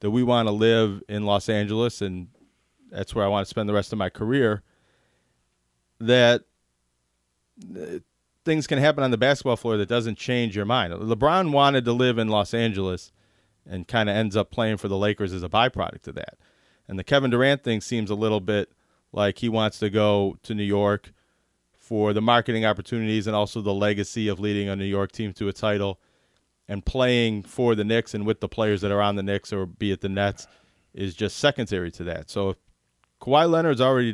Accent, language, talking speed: American, English, 205 wpm